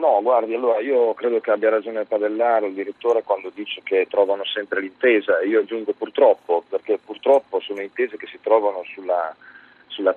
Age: 40-59